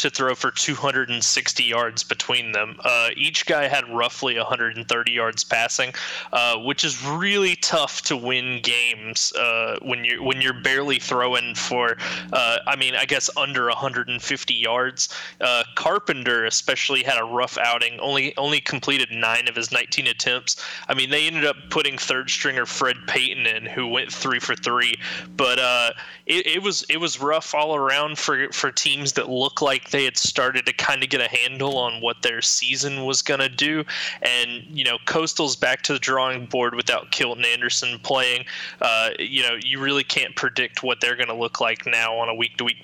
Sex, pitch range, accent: male, 120-150 Hz, American